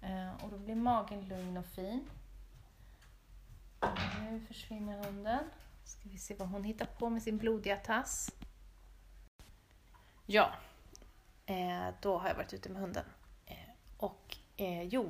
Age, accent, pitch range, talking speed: 30-49, native, 145-205 Hz, 125 wpm